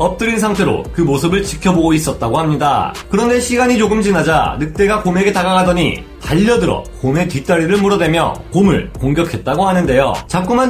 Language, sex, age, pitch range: Korean, male, 30-49, 155-210 Hz